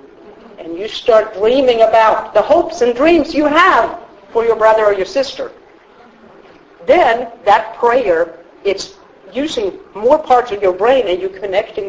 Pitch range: 215-330 Hz